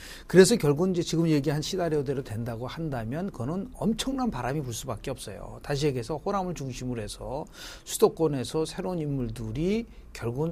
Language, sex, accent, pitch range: Korean, male, native, 130-185 Hz